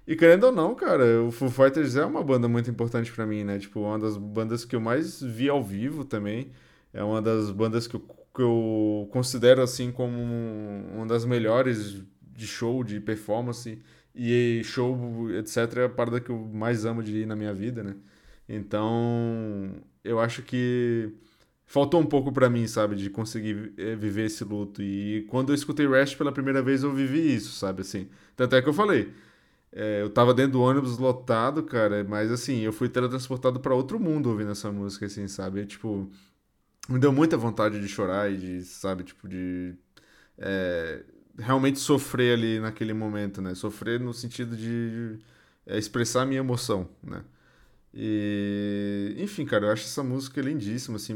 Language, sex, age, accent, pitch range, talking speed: Portuguese, male, 20-39, Brazilian, 105-125 Hz, 180 wpm